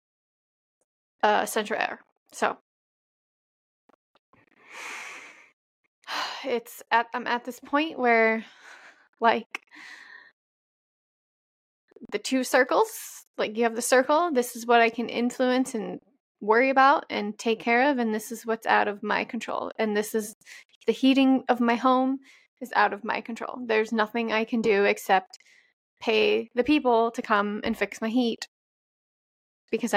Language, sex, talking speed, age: English, female, 140 wpm, 20-39